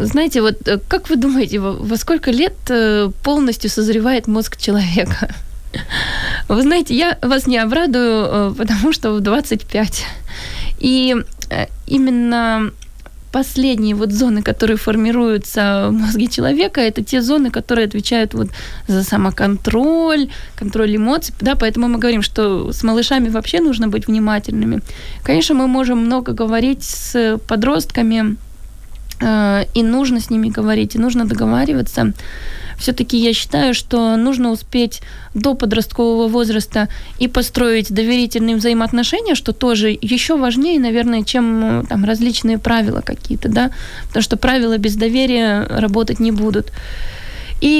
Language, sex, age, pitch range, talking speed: Ukrainian, female, 20-39, 220-255 Hz, 125 wpm